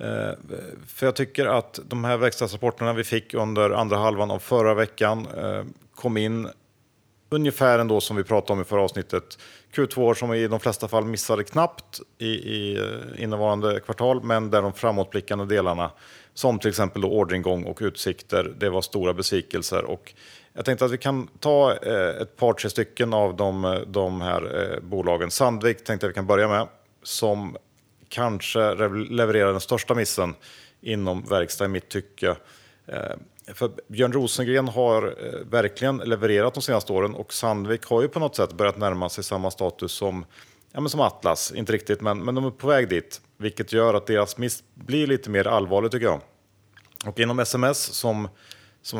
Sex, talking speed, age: male, 170 wpm, 40-59